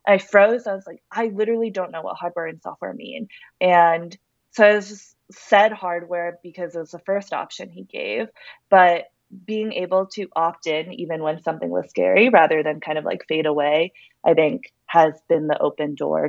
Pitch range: 155-195 Hz